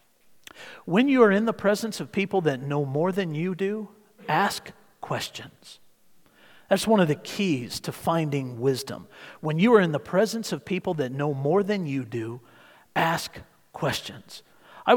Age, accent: 50-69, American